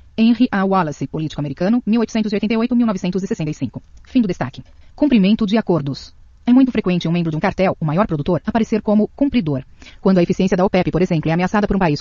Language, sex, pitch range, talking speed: Portuguese, female, 170-220 Hz, 190 wpm